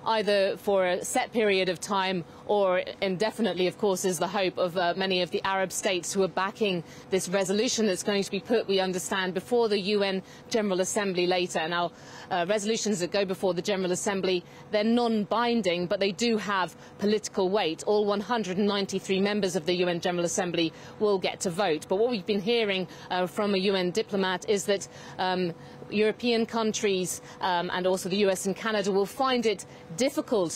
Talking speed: 185 wpm